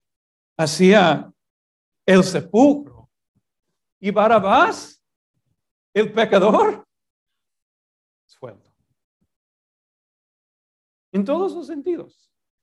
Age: 50-69